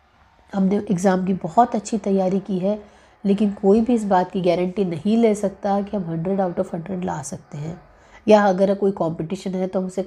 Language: Hindi